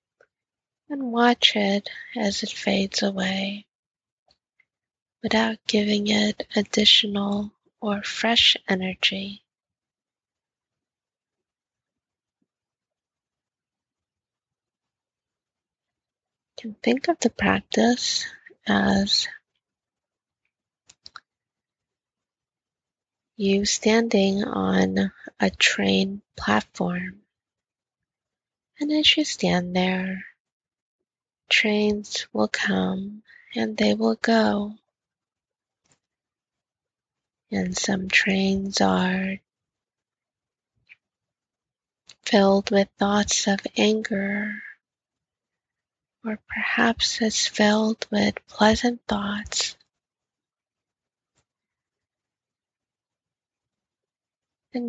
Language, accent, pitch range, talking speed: English, American, 195-225 Hz, 60 wpm